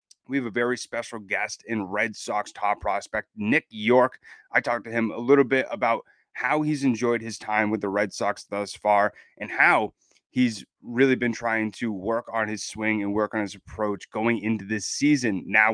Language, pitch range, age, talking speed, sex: English, 105-125 Hz, 30-49, 200 wpm, male